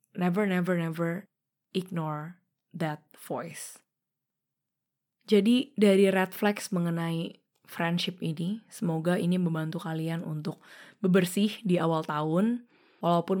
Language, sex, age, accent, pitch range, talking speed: Indonesian, female, 20-39, native, 160-200 Hz, 105 wpm